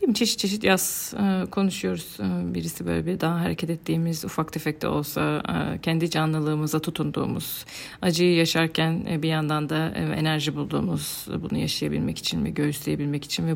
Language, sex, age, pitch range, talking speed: Turkish, female, 40-59, 145-170 Hz, 135 wpm